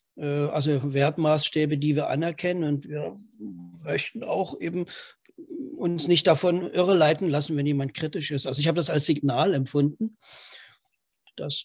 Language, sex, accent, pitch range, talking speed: German, male, German, 140-160 Hz, 140 wpm